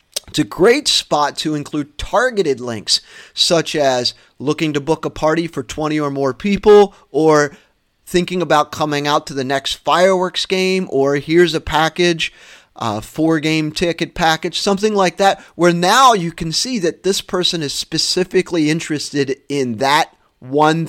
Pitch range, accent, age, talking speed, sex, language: 135-180 Hz, American, 30-49, 160 wpm, male, English